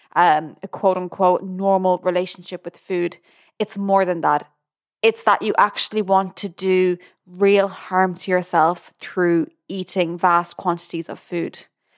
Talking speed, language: 140 wpm, English